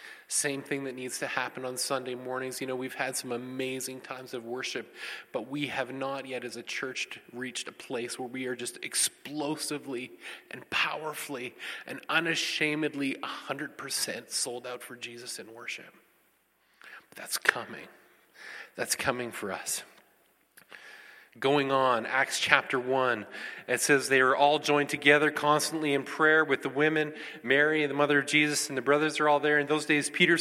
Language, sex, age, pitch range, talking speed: English, male, 30-49, 135-160 Hz, 165 wpm